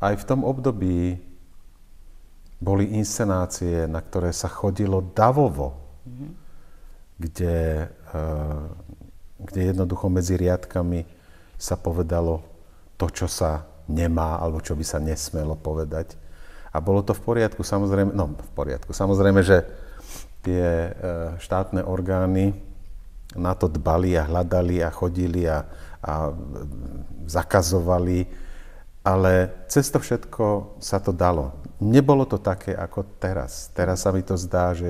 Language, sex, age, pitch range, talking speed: Slovak, male, 50-69, 80-100 Hz, 120 wpm